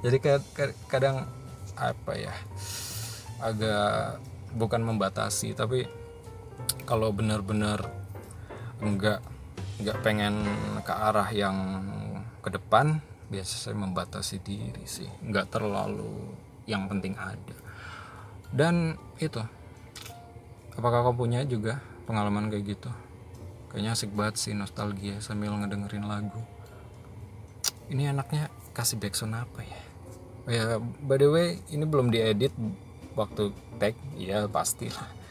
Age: 20-39